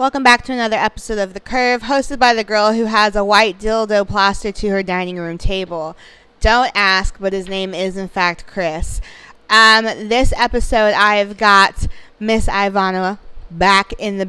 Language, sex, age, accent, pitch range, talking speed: English, female, 20-39, American, 185-215 Hz, 175 wpm